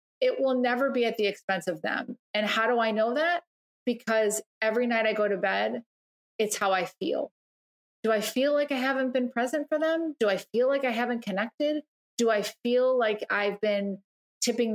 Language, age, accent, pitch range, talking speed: English, 30-49, American, 195-235 Hz, 205 wpm